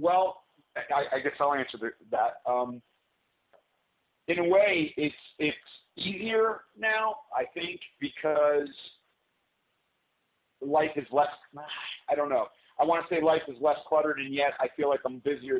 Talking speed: 150 wpm